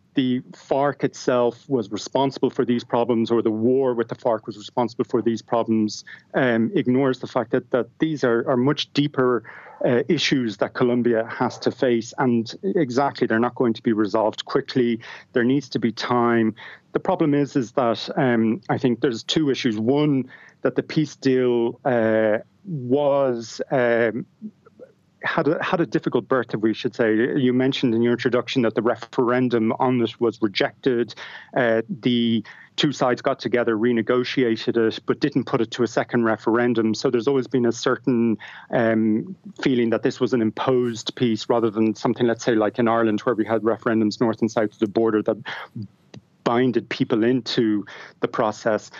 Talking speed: 180 wpm